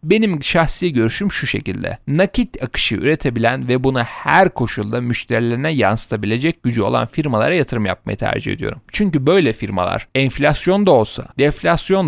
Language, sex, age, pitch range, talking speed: Turkish, male, 40-59, 120-165 Hz, 140 wpm